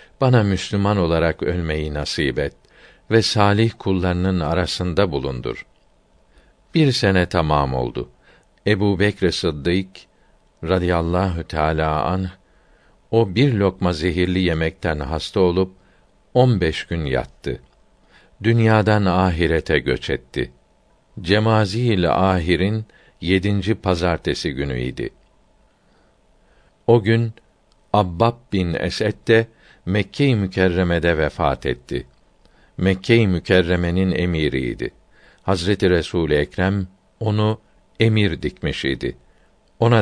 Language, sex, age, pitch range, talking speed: Turkish, male, 50-69, 85-110 Hz, 90 wpm